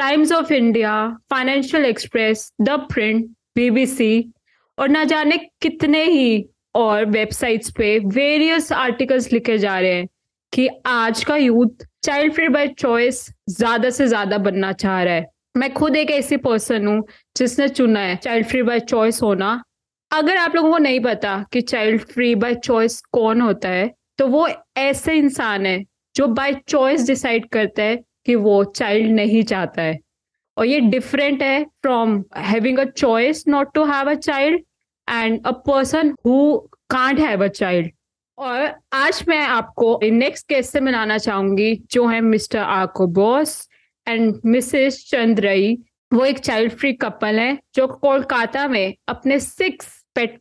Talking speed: 155 wpm